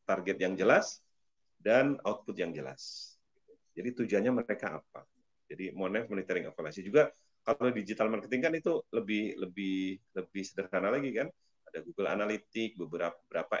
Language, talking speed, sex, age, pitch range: Indonesian, 140 wpm, male, 30-49, 95-110 Hz